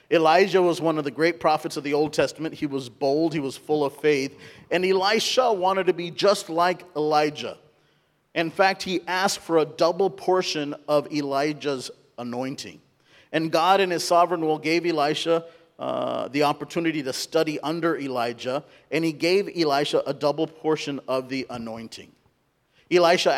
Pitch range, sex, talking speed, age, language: 150-180 Hz, male, 165 wpm, 40-59, English